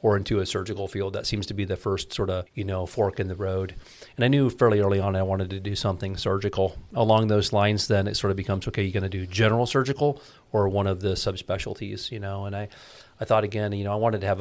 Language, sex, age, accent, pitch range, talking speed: English, male, 40-59, American, 100-110 Hz, 265 wpm